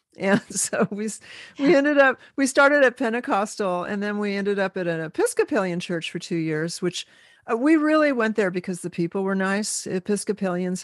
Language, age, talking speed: English, 50-69, 190 wpm